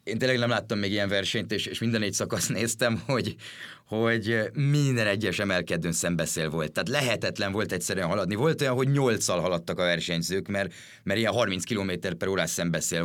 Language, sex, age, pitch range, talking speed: Hungarian, male, 30-49, 90-115 Hz, 185 wpm